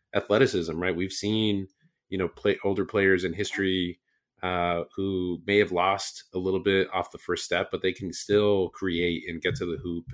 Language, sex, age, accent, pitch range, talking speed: English, male, 30-49, American, 85-100 Hz, 195 wpm